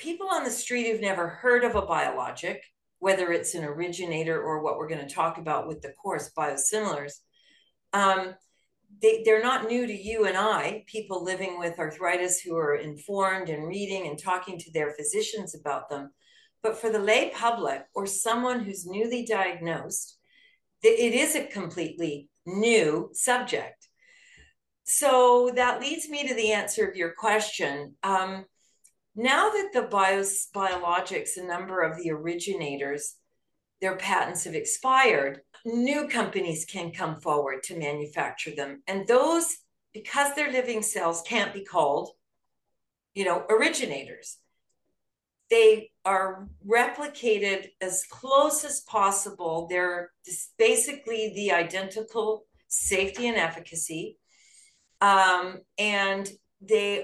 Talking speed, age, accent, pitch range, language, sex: 135 wpm, 40-59, American, 175-235 Hz, English, female